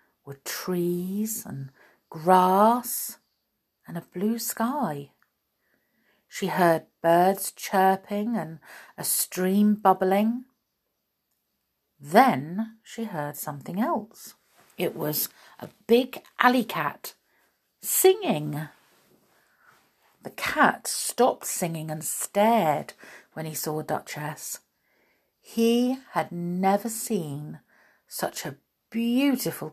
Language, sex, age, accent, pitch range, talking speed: English, female, 50-69, British, 160-225 Hz, 90 wpm